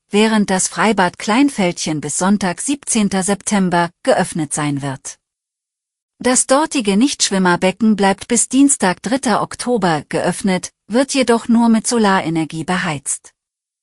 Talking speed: 110 wpm